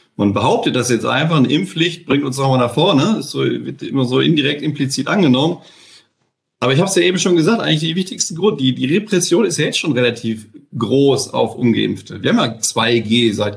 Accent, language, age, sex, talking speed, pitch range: German, German, 40-59, male, 210 wpm, 125-165 Hz